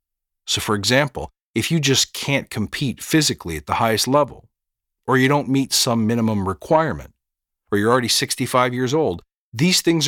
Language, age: English, 50-69